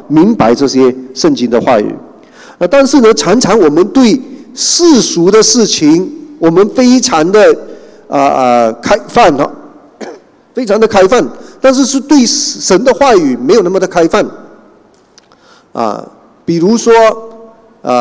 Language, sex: Chinese, male